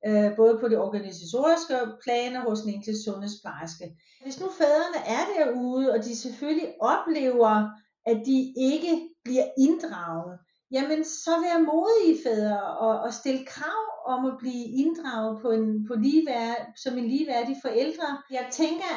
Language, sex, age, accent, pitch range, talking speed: Danish, female, 40-59, native, 215-280 Hz, 145 wpm